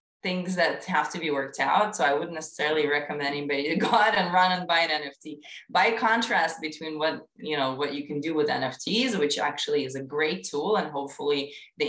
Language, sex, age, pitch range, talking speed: English, female, 20-39, 150-220 Hz, 215 wpm